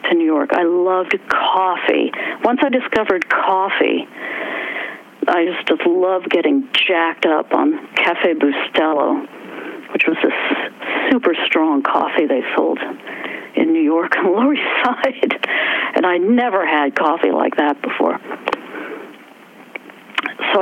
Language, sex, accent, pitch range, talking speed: English, female, American, 210-330 Hz, 125 wpm